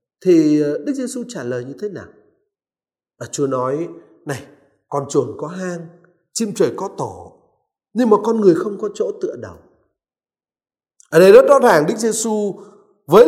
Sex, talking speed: male, 165 wpm